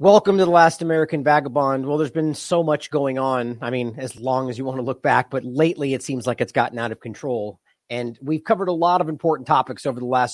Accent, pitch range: American, 130-160 Hz